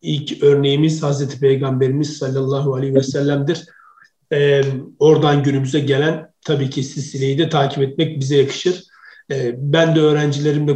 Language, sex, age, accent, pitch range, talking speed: Turkish, male, 50-69, native, 145-175 Hz, 135 wpm